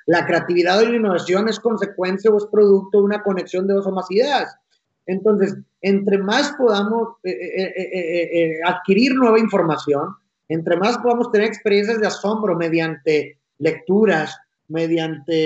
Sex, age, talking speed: male, 30-49, 150 wpm